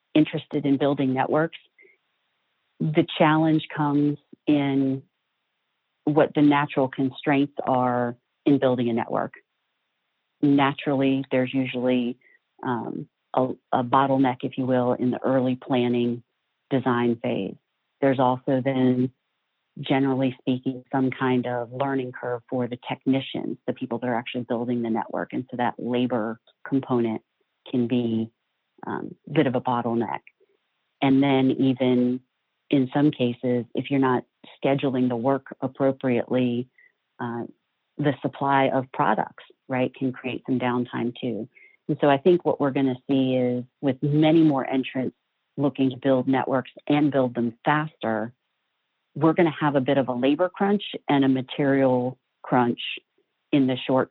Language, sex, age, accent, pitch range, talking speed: English, female, 40-59, American, 125-140 Hz, 145 wpm